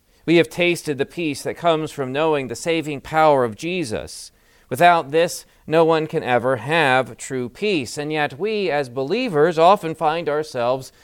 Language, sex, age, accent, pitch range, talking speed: English, male, 40-59, American, 120-170 Hz, 170 wpm